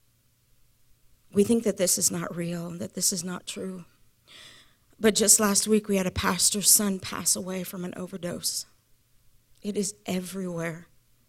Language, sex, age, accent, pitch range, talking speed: English, female, 40-59, American, 125-205 Hz, 160 wpm